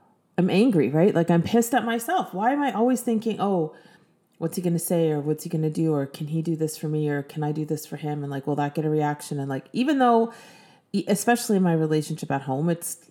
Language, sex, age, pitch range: English, female, 30-49, 155-190 Hz